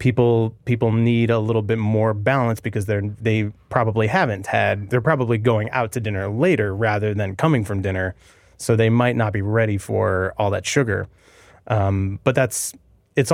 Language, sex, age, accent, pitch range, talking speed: English, male, 30-49, American, 100-115 Hz, 180 wpm